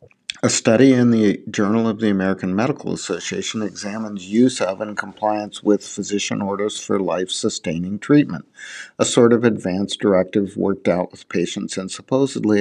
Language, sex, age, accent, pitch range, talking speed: English, male, 50-69, American, 100-120 Hz, 150 wpm